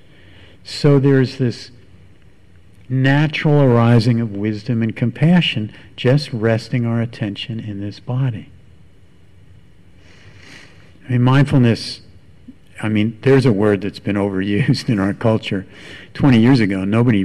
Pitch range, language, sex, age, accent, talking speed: 100-130 Hz, English, male, 50-69, American, 120 wpm